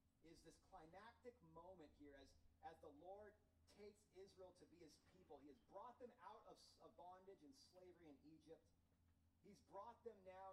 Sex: male